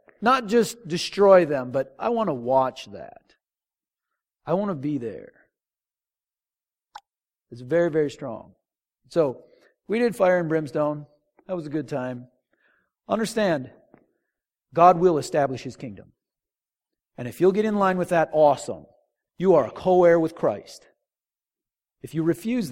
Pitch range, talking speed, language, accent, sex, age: 120-165 Hz, 145 wpm, English, American, male, 50-69